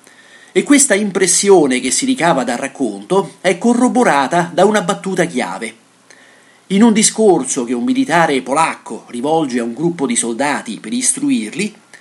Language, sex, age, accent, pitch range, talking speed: Italian, male, 40-59, native, 160-225 Hz, 145 wpm